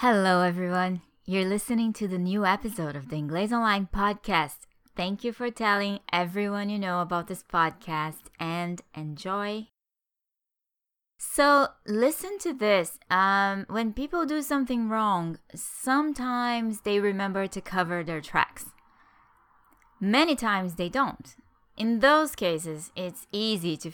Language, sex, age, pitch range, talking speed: English, female, 20-39, 175-235 Hz, 130 wpm